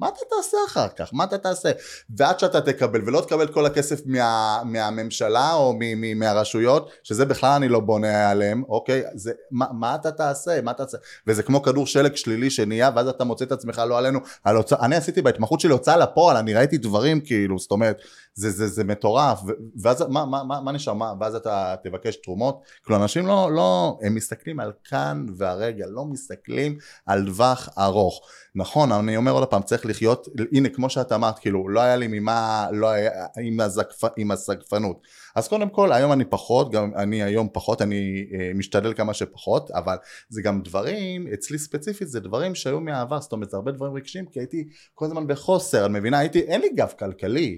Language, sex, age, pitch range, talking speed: Hebrew, male, 20-39, 105-145 Hz, 185 wpm